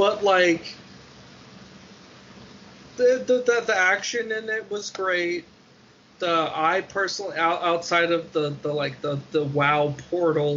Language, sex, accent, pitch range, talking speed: English, male, American, 140-170 Hz, 125 wpm